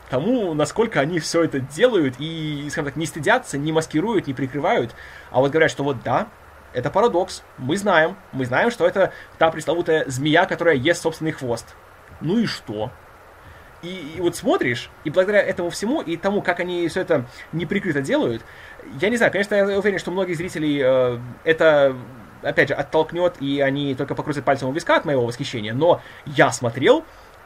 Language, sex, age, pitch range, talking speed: Russian, male, 20-39, 135-190 Hz, 180 wpm